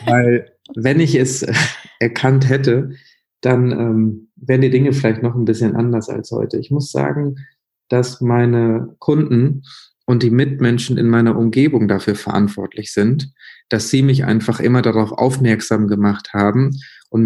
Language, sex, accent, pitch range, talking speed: German, male, German, 115-130 Hz, 150 wpm